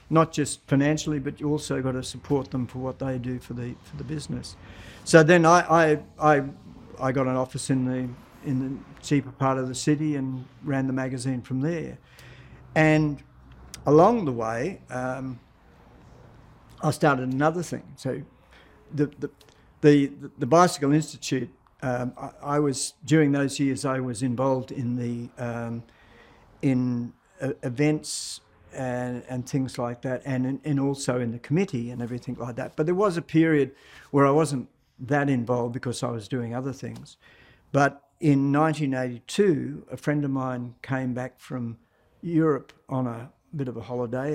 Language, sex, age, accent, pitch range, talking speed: English, male, 60-79, Australian, 125-145 Hz, 170 wpm